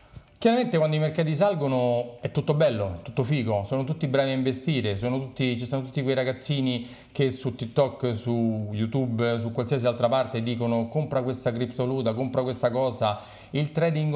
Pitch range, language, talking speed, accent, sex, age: 105-135 Hz, Italian, 175 wpm, native, male, 40-59